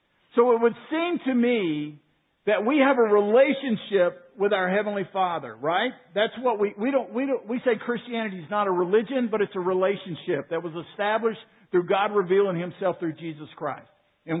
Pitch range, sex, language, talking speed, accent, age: 185-240 Hz, male, English, 185 wpm, American, 50-69